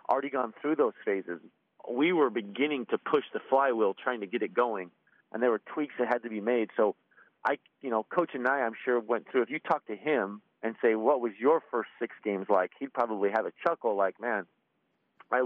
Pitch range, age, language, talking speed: 110-135 Hz, 40-59, English, 230 wpm